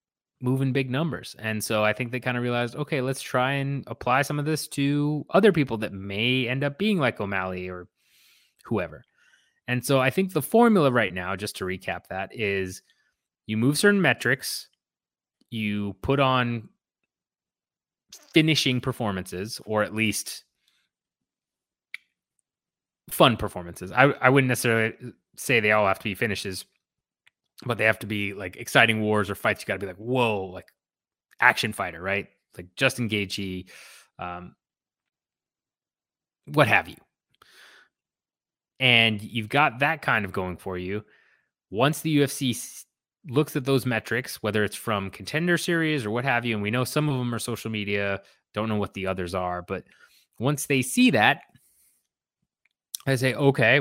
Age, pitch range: 20-39, 100-135 Hz